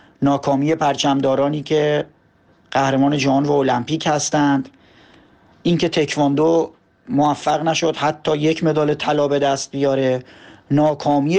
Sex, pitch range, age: male, 140-155 Hz, 40-59